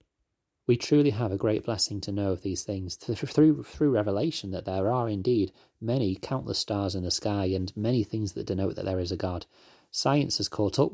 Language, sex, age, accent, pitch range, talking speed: English, male, 30-49, British, 95-110 Hz, 210 wpm